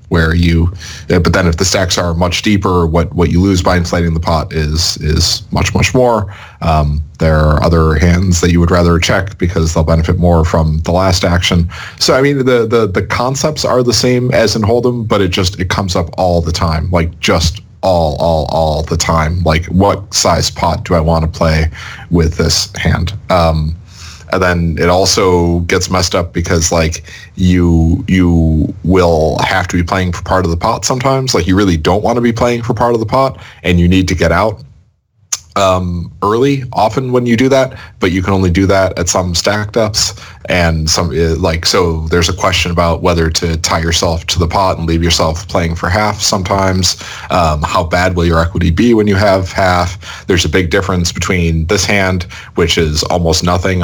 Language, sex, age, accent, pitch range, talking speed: English, male, 30-49, American, 85-100 Hz, 205 wpm